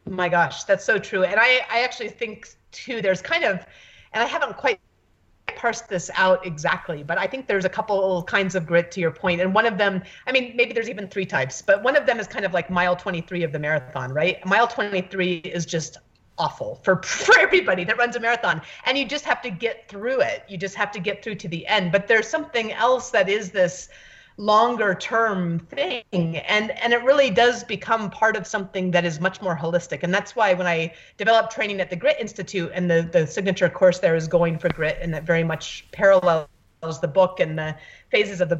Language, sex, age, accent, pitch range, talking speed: English, female, 30-49, American, 170-225 Hz, 225 wpm